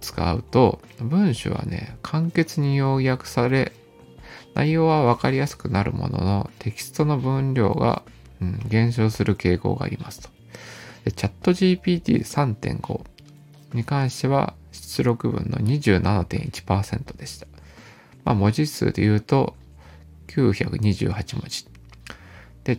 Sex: male